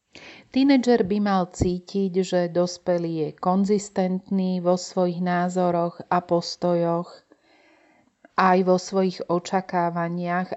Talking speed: 95 wpm